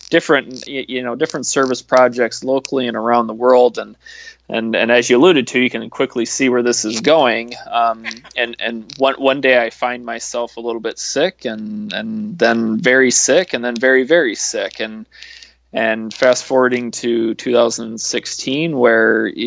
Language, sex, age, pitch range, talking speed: English, male, 20-39, 115-130 Hz, 175 wpm